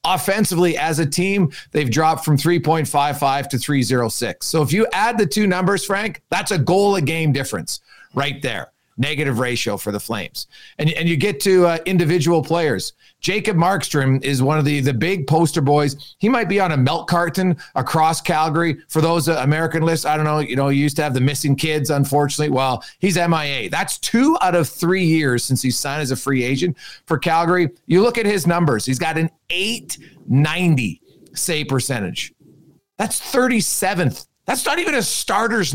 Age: 40-59